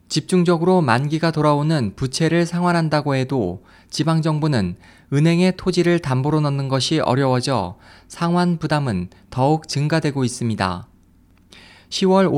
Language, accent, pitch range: Korean, native, 115-165 Hz